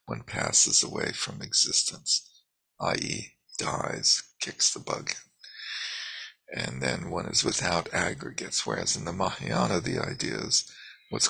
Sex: male